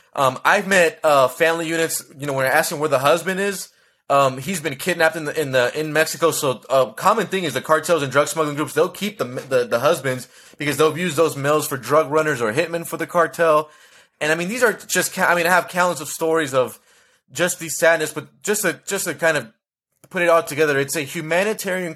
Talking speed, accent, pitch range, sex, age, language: 240 wpm, American, 150-180 Hz, male, 20-39, English